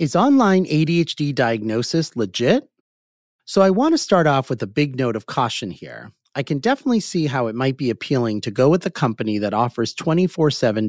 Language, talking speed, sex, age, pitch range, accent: English, 195 wpm, male, 30-49, 115-165 Hz, American